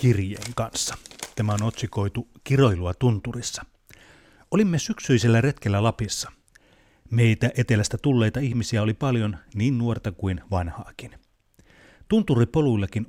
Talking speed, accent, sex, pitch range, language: 100 wpm, native, male, 100-125 Hz, Finnish